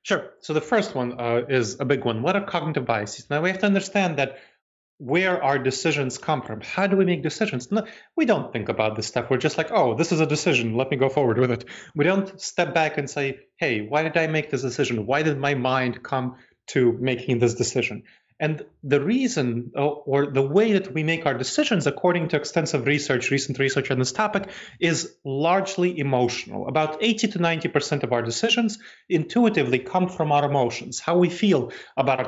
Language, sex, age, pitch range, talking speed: English, male, 30-49, 125-170 Hz, 210 wpm